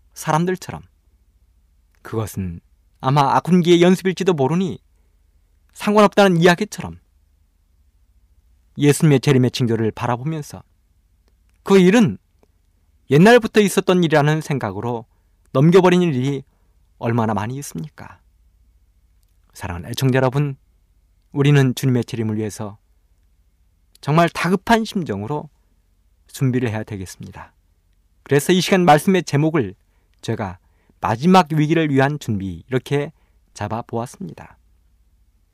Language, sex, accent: Korean, male, native